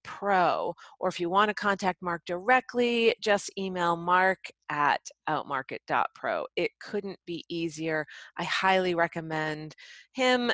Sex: female